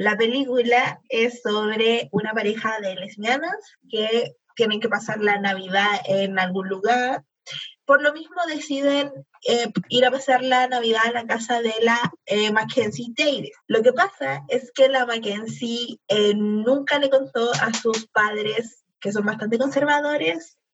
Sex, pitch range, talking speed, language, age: female, 220-275 Hz, 155 wpm, Spanish, 20-39